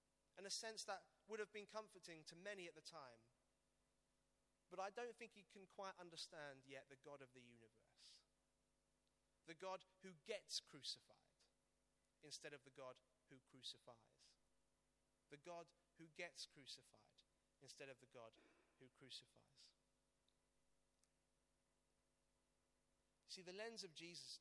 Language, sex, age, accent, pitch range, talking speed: English, male, 30-49, British, 135-190 Hz, 135 wpm